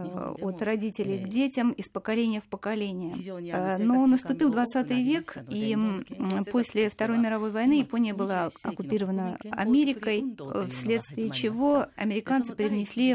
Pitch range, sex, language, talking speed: 195-245 Hz, female, Russian, 115 wpm